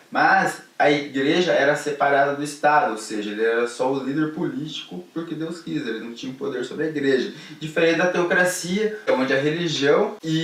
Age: 20-39